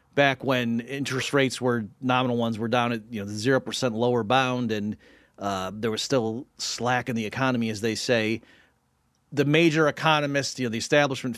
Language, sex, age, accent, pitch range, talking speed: English, male, 40-59, American, 120-145 Hz, 185 wpm